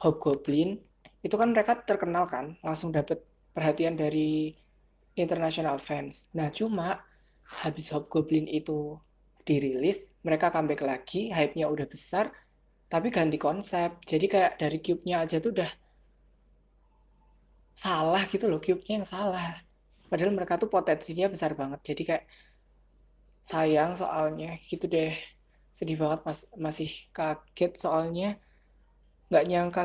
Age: 20-39